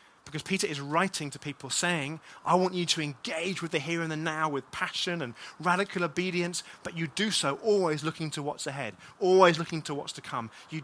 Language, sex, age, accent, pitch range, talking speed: English, male, 30-49, British, 145-175 Hz, 215 wpm